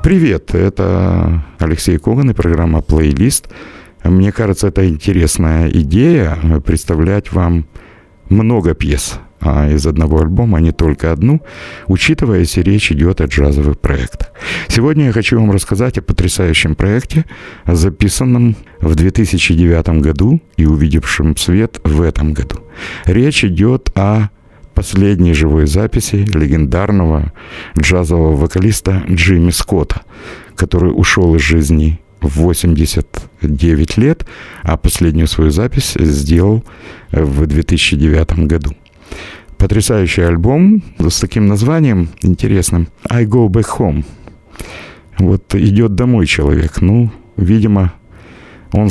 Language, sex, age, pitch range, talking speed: Russian, male, 60-79, 80-105 Hz, 115 wpm